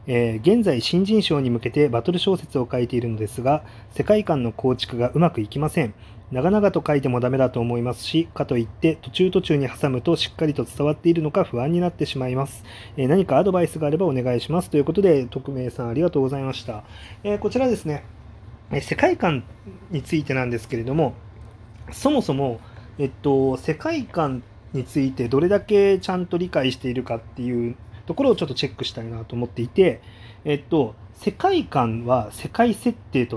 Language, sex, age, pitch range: Japanese, male, 20-39, 115-170 Hz